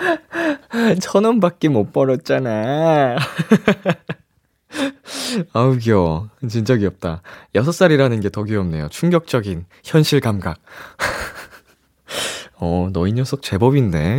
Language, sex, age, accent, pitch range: Korean, male, 20-39, native, 95-155 Hz